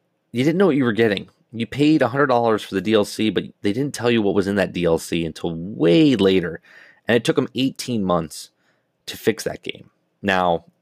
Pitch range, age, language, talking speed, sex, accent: 85-115 Hz, 30-49, English, 215 wpm, male, American